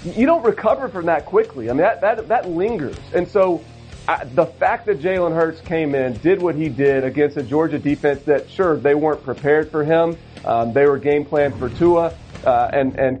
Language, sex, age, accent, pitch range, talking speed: English, male, 40-59, American, 140-165 Hz, 215 wpm